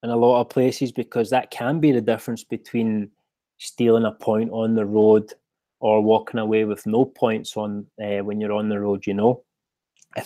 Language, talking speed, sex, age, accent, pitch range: English, 200 wpm, male, 20-39, British, 105-125 Hz